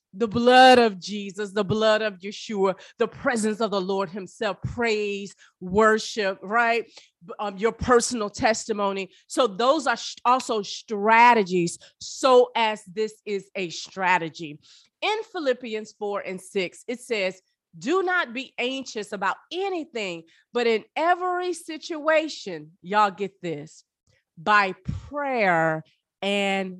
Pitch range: 195-265 Hz